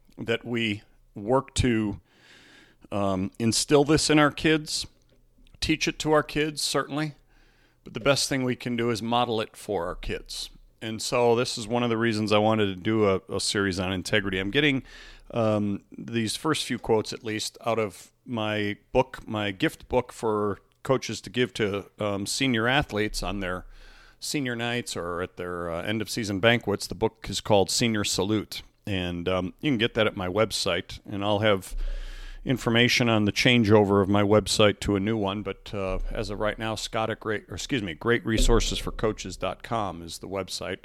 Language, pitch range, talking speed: English, 100-120 Hz, 180 wpm